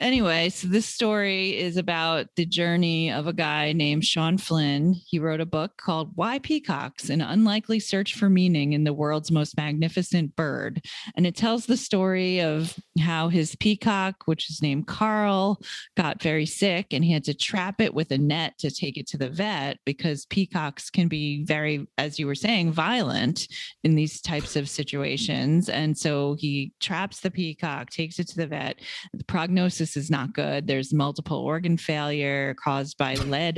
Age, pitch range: 30-49, 150-190 Hz